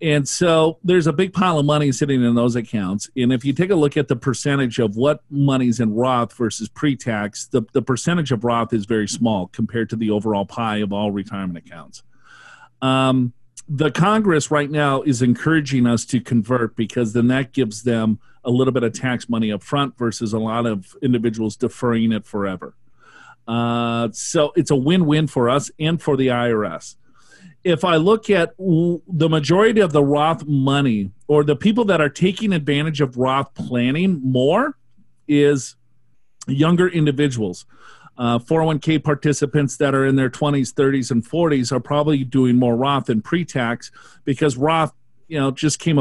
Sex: male